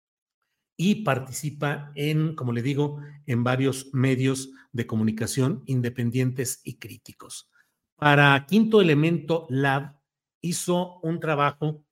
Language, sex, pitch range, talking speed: Spanish, male, 130-175 Hz, 105 wpm